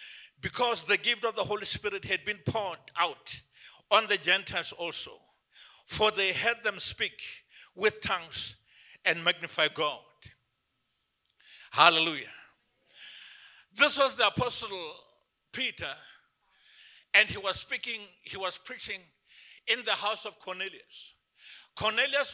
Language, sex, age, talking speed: English, male, 50-69, 120 wpm